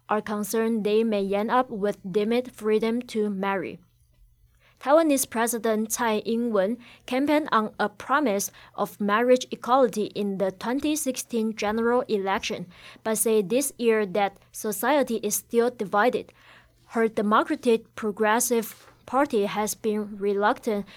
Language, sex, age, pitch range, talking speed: English, female, 20-39, 205-240 Hz, 125 wpm